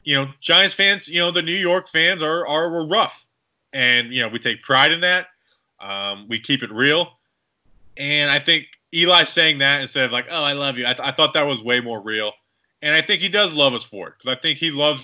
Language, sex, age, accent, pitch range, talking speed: English, male, 20-39, American, 110-145 Hz, 250 wpm